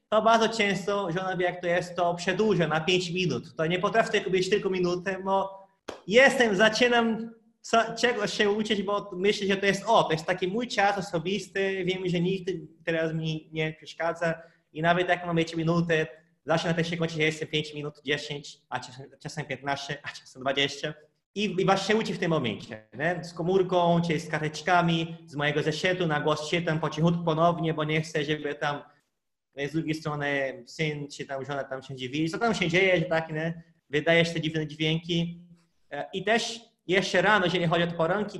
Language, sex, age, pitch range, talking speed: Polish, male, 20-39, 160-200 Hz, 190 wpm